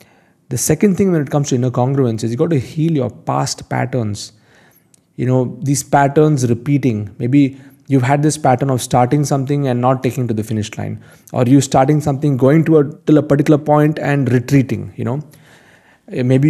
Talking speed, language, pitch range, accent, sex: 195 wpm, English, 125-150 Hz, Indian, male